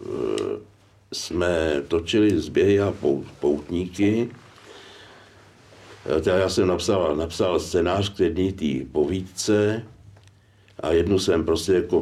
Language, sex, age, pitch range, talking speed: Slovak, male, 60-79, 85-105 Hz, 95 wpm